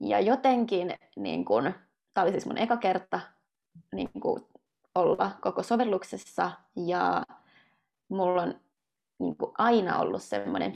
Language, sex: Finnish, female